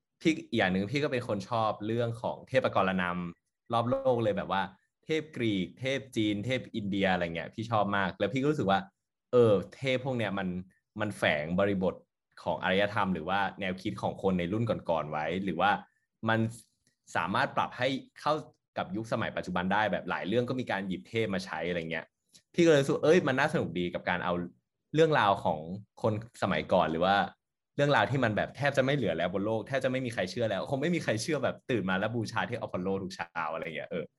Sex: male